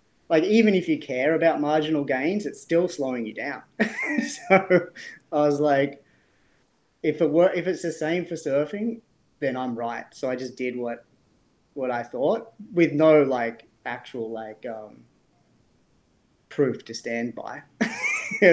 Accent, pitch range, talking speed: Australian, 115-145 Hz, 155 wpm